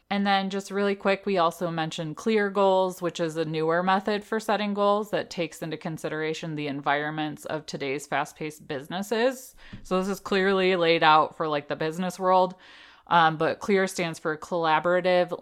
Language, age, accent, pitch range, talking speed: English, 20-39, American, 160-190 Hz, 175 wpm